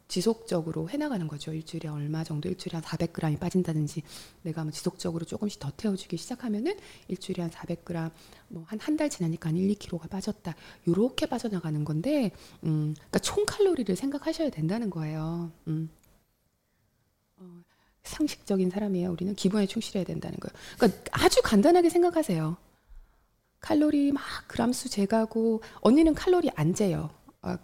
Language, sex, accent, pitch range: Korean, female, native, 170-235 Hz